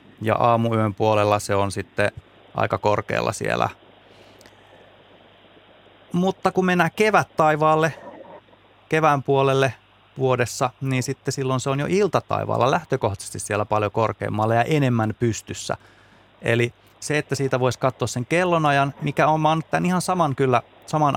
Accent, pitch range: native, 105-135 Hz